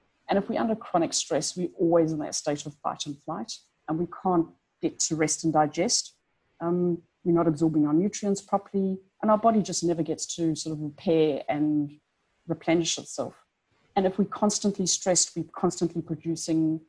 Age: 30-49